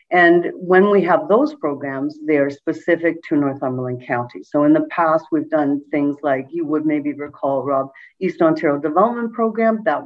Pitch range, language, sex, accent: 150-210 Hz, English, female, American